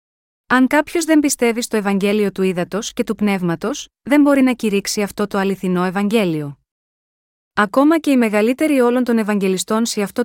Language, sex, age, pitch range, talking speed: Greek, female, 20-39, 195-240 Hz, 165 wpm